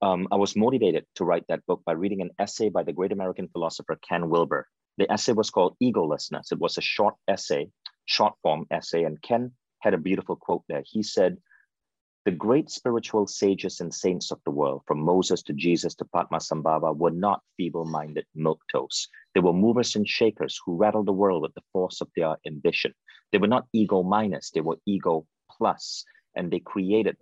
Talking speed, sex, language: 195 wpm, male, English